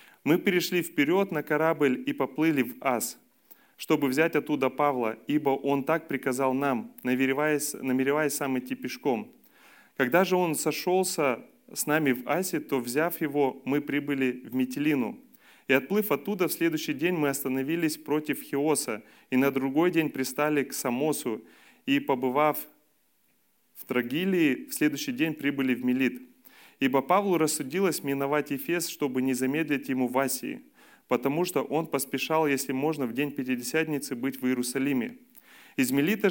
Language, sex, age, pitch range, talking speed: Russian, male, 30-49, 135-175 Hz, 145 wpm